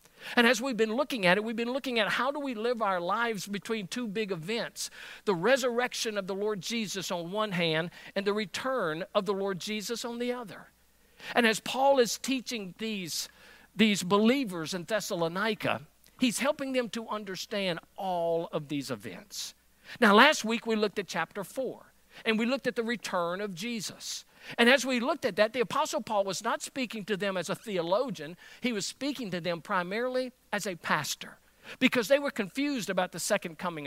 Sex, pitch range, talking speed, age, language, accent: male, 185-245 Hz, 195 wpm, 50-69, English, American